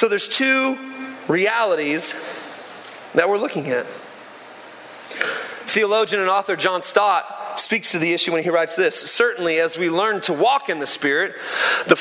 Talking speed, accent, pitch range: 155 wpm, American, 200-275 Hz